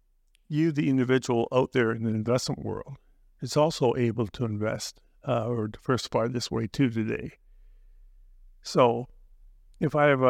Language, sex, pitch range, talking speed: English, male, 110-135 Hz, 145 wpm